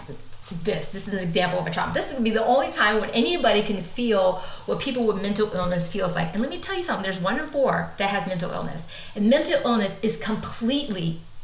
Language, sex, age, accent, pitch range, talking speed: English, female, 30-49, American, 180-250 Hz, 240 wpm